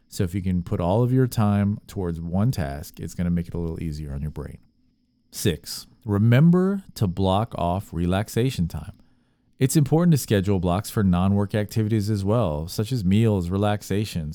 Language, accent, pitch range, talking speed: English, American, 90-115 Hz, 185 wpm